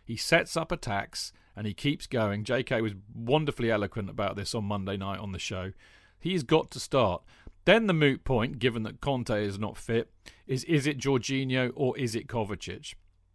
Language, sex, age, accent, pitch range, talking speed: English, male, 40-59, British, 105-135 Hz, 190 wpm